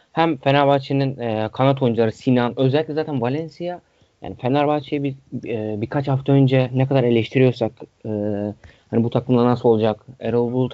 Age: 30-49